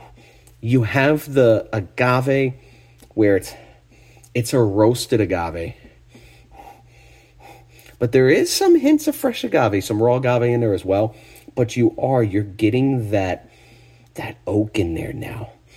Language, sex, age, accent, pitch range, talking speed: English, male, 30-49, American, 95-120 Hz, 135 wpm